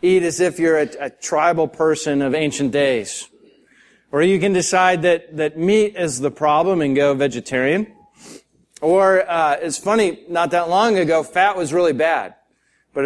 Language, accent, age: English, American, 30-49